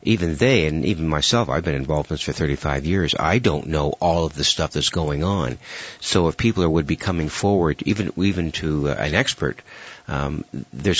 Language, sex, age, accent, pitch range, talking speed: English, male, 60-79, American, 75-95 Hz, 205 wpm